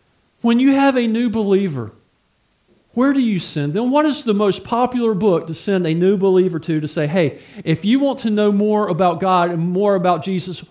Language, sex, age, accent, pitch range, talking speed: English, male, 40-59, American, 160-210 Hz, 215 wpm